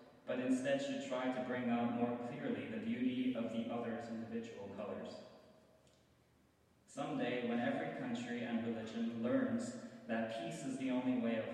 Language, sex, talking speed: English, male, 155 wpm